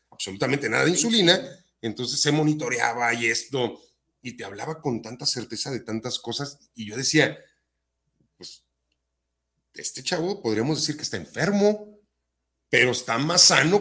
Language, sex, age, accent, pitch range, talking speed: Spanish, male, 40-59, Mexican, 115-170 Hz, 145 wpm